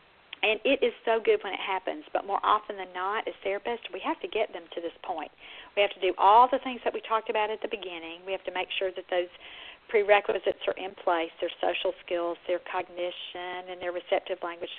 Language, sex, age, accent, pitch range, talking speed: English, female, 50-69, American, 185-255 Hz, 230 wpm